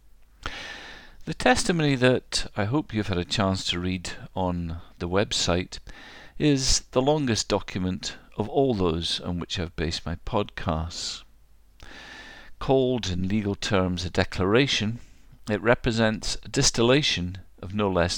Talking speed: 130 wpm